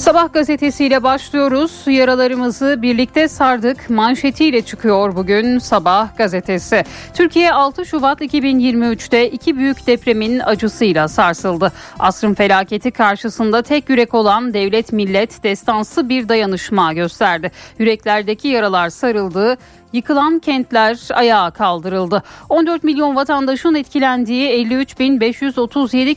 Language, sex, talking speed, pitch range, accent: Turkish, female, 100 wpm, 210-270 Hz, native